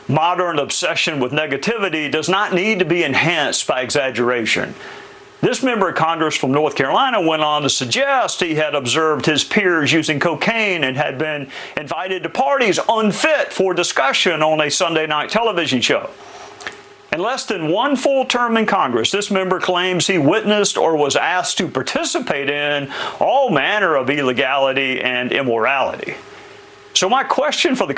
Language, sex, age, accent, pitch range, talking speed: English, male, 50-69, American, 170-285 Hz, 160 wpm